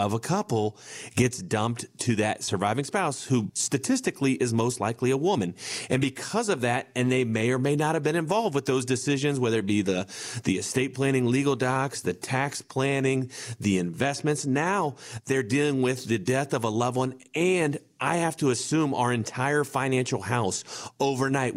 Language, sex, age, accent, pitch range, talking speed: English, male, 40-59, American, 120-145 Hz, 185 wpm